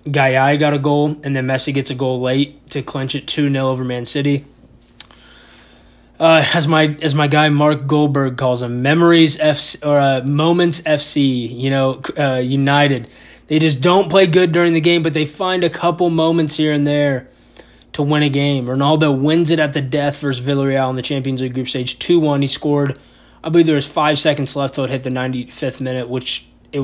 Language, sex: English, male